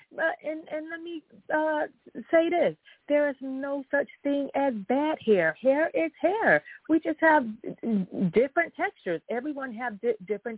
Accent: American